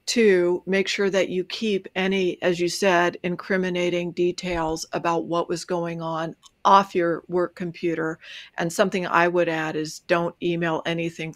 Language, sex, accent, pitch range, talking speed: English, female, American, 165-185 Hz, 160 wpm